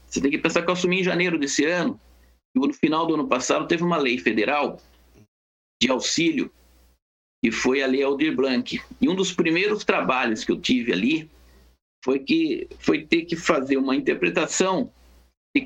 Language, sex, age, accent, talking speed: Portuguese, male, 60-79, Brazilian, 180 wpm